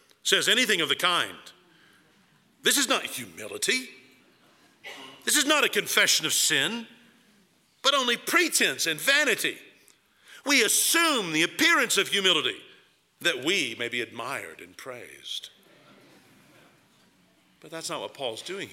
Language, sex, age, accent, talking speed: English, male, 50-69, American, 130 wpm